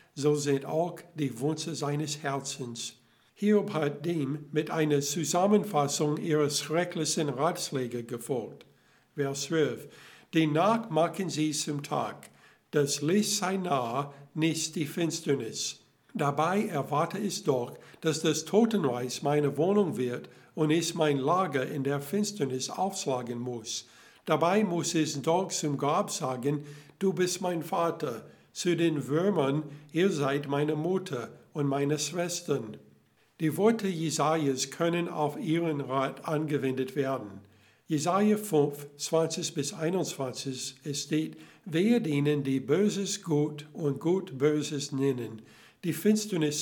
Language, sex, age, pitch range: German, male, 60-79, 140-170 Hz